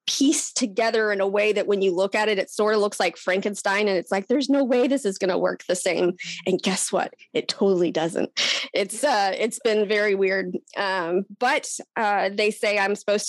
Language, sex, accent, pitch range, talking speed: English, female, American, 195-245 Hz, 220 wpm